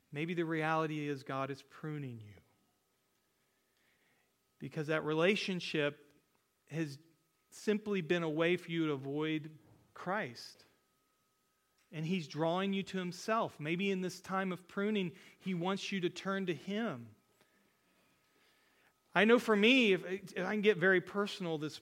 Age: 40-59